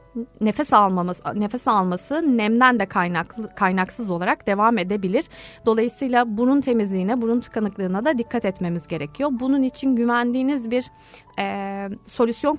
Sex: female